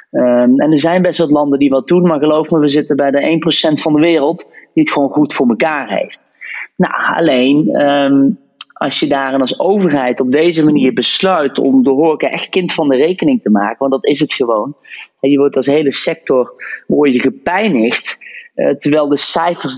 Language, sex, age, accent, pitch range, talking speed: Dutch, male, 30-49, Dutch, 130-175 Hz, 200 wpm